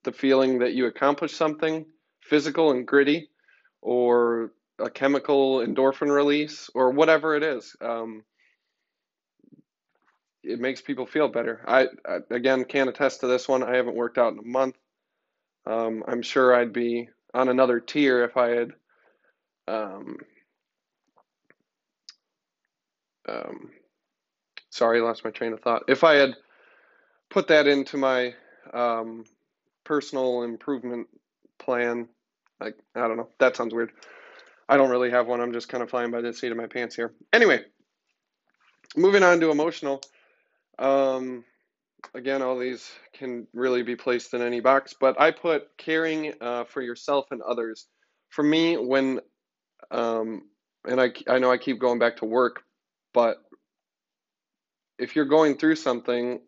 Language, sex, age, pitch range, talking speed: English, male, 20-39, 120-145 Hz, 145 wpm